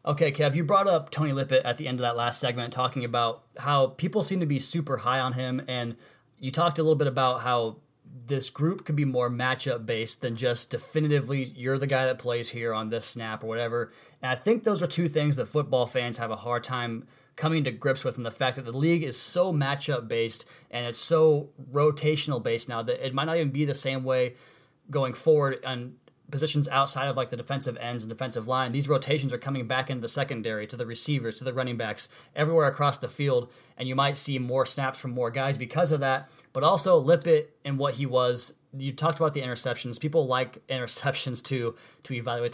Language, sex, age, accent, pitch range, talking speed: English, male, 20-39, American, 125-150 Hz, 220 wpm